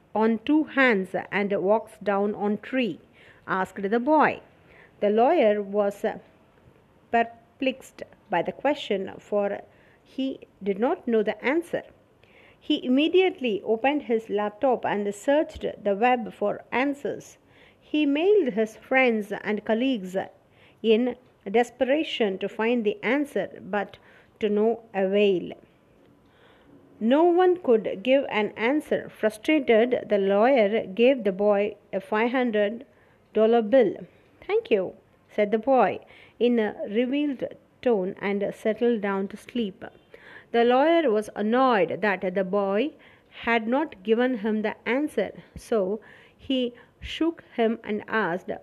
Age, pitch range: 50-69, 205-260 Hz